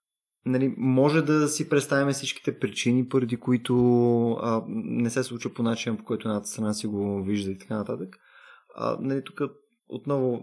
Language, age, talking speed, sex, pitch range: Bulgarian, 20-39, 165 wpm, male, 115-155 Hz